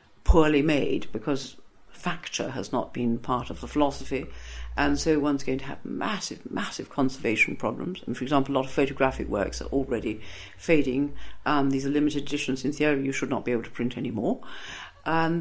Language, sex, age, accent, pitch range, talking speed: English, female, 60-79, British, 135-190 Hz, 185 wpm